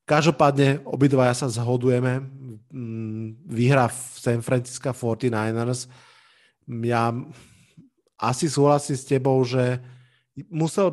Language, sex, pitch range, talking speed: Slovak, male, 120-140 Hz, 90 wpm